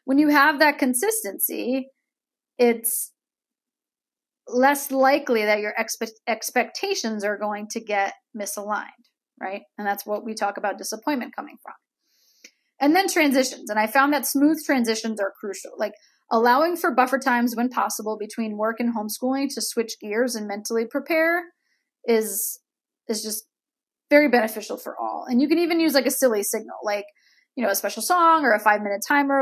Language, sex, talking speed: English, female, 165 wpm